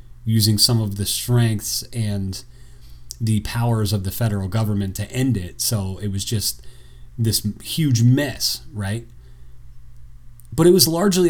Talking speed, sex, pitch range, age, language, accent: 145 wpm, male, 95-120 Hz, 40-59, English, American